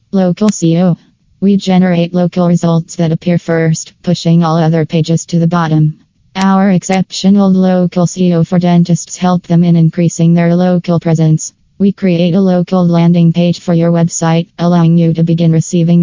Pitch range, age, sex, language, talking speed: 165-180 Hz, 20-39, female, English, 160 wpm